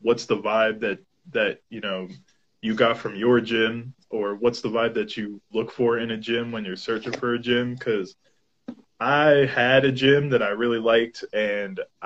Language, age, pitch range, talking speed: English, 20-39, 115-150 Hz, 195 wpm